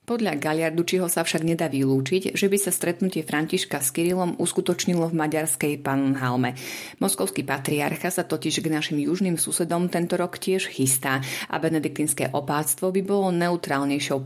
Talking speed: 145 wpm